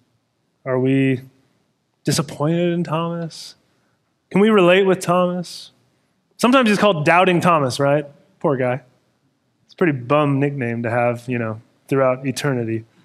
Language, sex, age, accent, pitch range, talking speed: English, male, 20-39, American, 145-205 Hz, 135 wpm